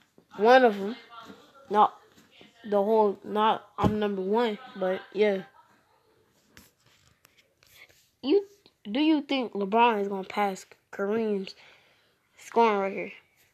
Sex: female